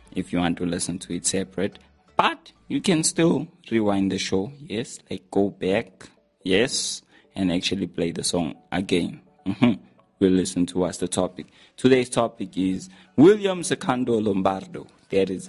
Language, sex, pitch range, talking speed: English, male, 90-105 Hz, 160 wpm